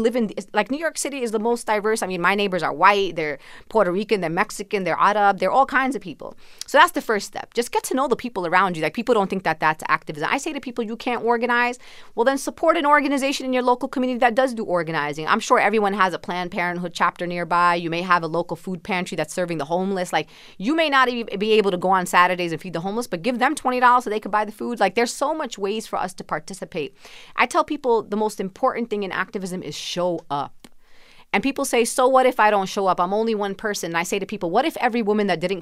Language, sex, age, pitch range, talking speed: English, female, 30-49, 175-235 Hz, 270 wpm